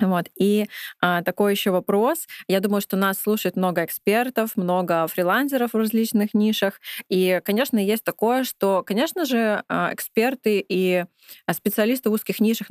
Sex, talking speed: female, 145 wpm